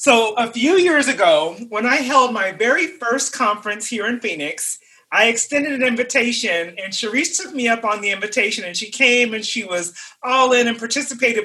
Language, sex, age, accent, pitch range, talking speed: English, male, 40-59, American, 215-270 Hz, 195 wpm